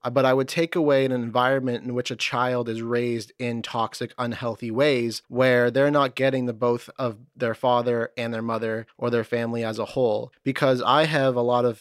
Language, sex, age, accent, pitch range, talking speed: English, male, 20-39, American, 115-130 Hz, 210 wpm